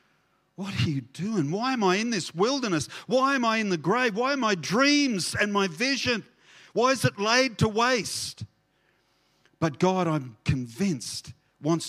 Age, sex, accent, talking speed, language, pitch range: 50-69, male, Australian, 170 wpm, English, 145-230 Hz